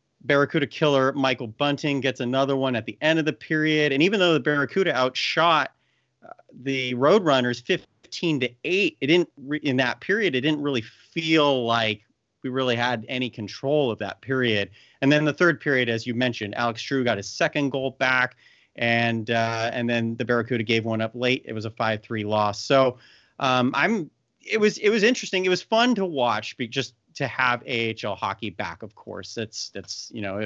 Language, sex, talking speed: English, male, 195 wpm